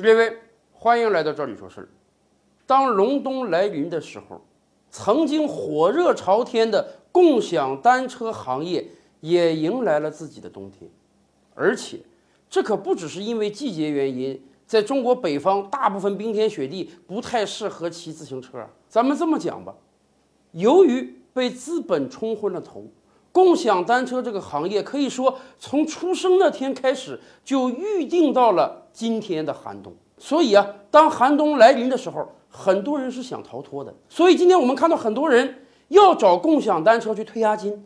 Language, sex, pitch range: Chinese, male, 190-295 Hz